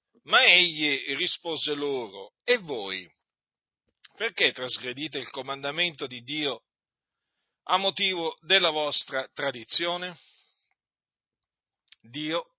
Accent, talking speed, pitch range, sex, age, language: native, 85 wpm, 130-175 Hz, male, 50-69, Italian